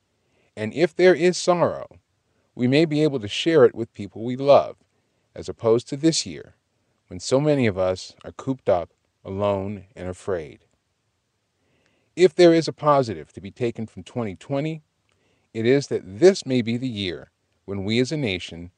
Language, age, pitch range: English, 40-59, 100-135 Hz